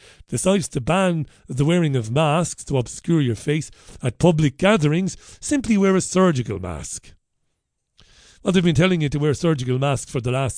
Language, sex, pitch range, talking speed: English, male, 120-165 Hz, 175 wpm